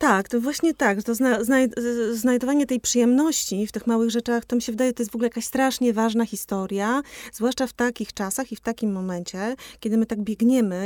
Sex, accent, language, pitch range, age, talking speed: female, native, Polish, 185-230 Hz, 30-49, 195 wpm